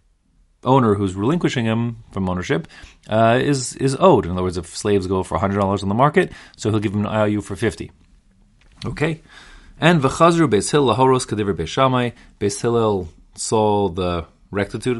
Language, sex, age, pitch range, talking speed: English, male, 30-49, 90-125 Hz, 160 wpm